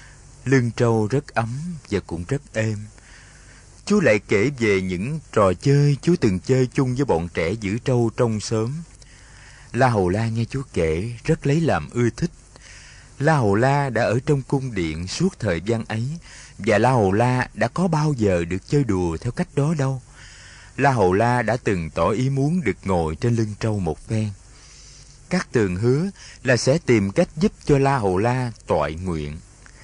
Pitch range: 100-140 Hz